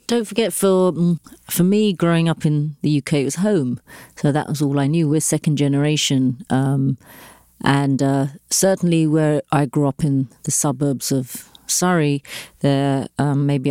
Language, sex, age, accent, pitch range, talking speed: English, female, 40-59, British, 135-160 Hz, 165 wpm